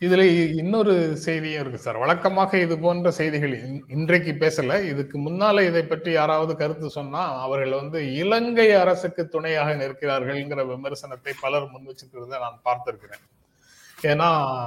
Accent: native